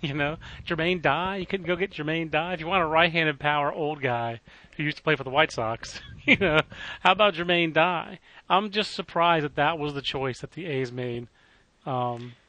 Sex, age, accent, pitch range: male, 30-49, American, 130-165 Hz